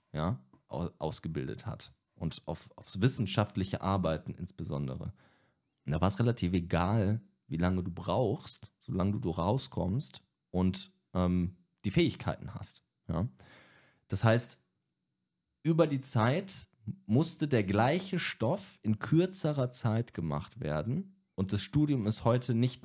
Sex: male